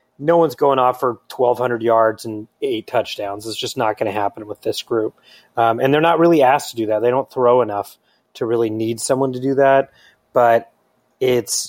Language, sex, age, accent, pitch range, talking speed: English, male, 30-49, American, 115-135 Hz, 210 wpm